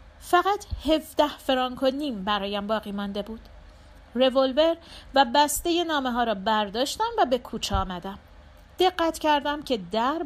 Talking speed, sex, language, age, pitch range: 140 wpm, female, Persian, 40-59, 215-295 Hz